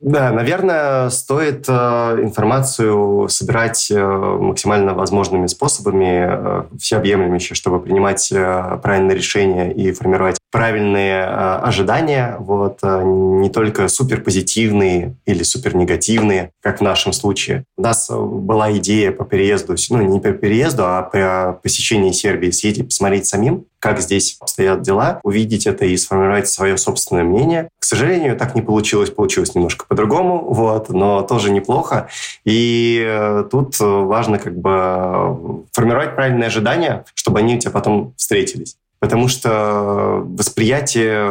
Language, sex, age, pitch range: Russian, male, 20-39, 95-115 Hz